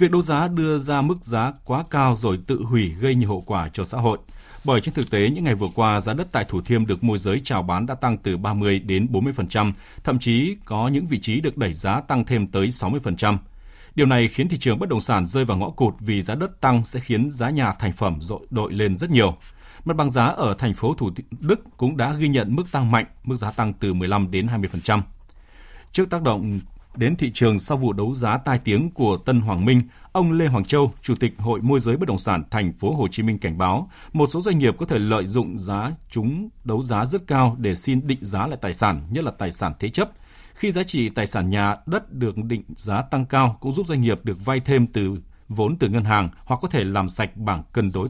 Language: Vietnamese